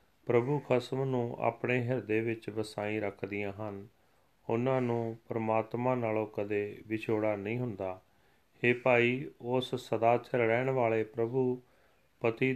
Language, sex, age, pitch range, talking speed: Punjabi, male, 40-59, 110-125 Hz, 125 wpm